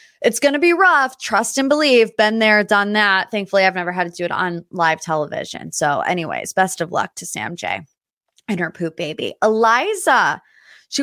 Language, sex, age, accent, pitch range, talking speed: English, female, 20-39, American, 180-245 Hz, 195 wpm